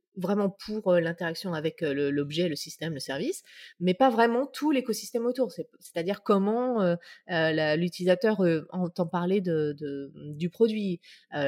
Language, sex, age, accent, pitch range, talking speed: French, female, 30-49, French, 165-215 Hz, 155 wpm